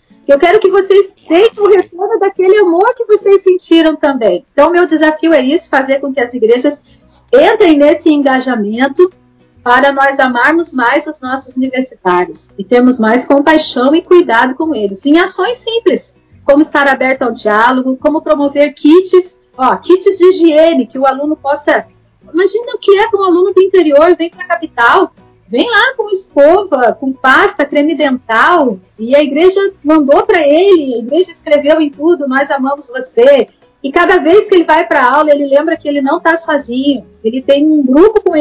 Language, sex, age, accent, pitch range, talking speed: Portuguese, female, 40-59, Brazilian, 270-360 Hz, 180 wpm